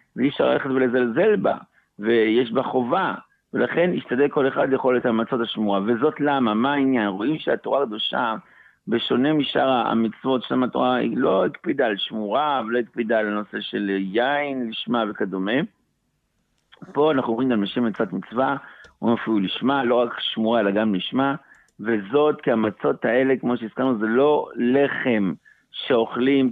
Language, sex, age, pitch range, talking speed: Hebrew, male, 60-79, 110-140 Hz, 155 wpm